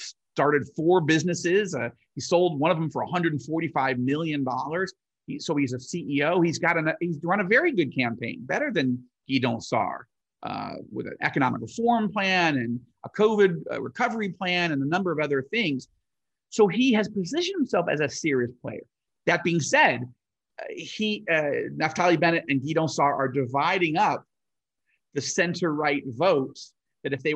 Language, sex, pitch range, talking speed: English, male, 135-180 Hz, 165 wpm